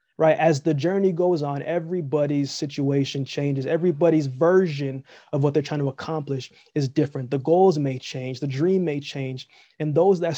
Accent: American